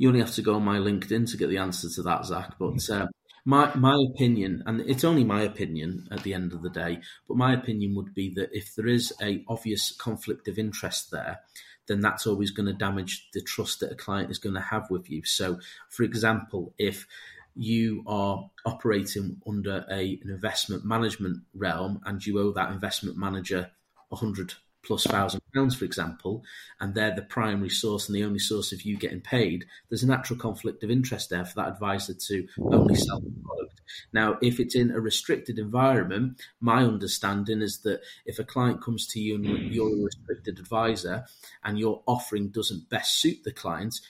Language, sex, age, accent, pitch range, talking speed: English, male, 30-49, British, 95-115 Hz, 195 wpm